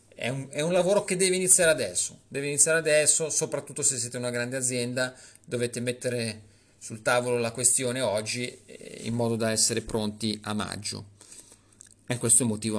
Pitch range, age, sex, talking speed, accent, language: 110-145 Hz, 40-59, male, 155 wpm, native, Italian